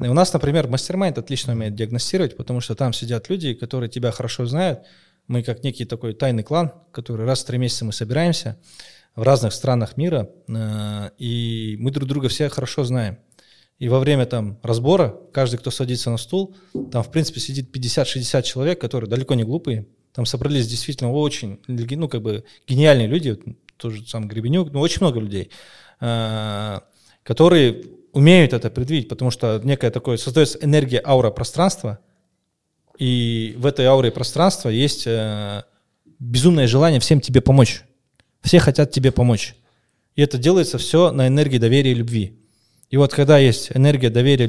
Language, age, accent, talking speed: Russian, 20-39, native, 165 wpm